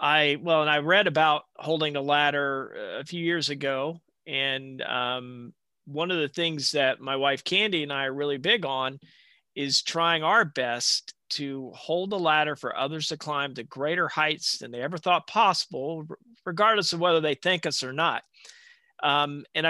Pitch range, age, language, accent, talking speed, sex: 135-160 Hz, 40-59, English, American, 180 wpm, male